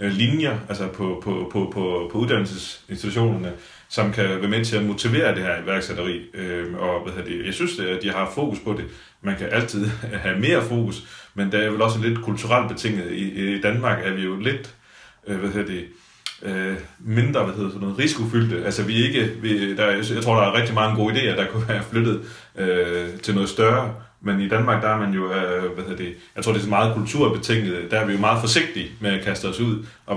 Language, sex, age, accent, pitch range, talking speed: Danish, male, 30-49, native, 95-110 Hz, 185 wpm